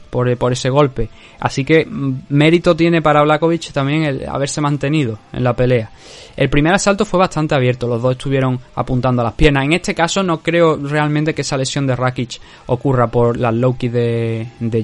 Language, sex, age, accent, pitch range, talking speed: Spanish, male, 20-39, Spanish, 120-150 Hz, 190 wpm